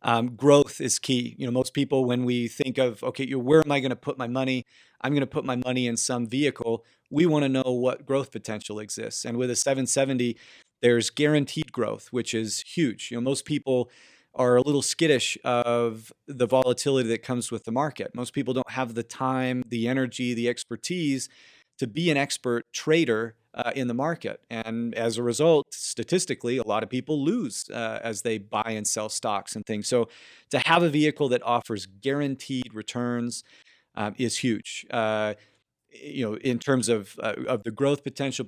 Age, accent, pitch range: 40-59, American, 115-135 Hz